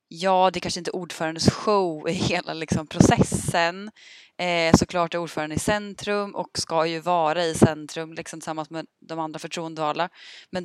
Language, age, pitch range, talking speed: Swedish, 20-39, 155-180 Hz, 150 wpm